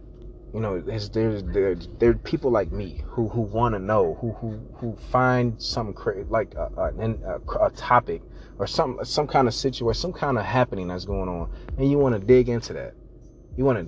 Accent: American